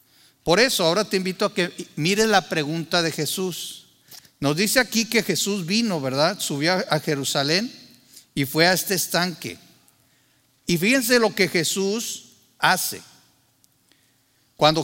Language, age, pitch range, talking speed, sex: Spanish, 50-69, 155-200 Hz, 140 wpm, male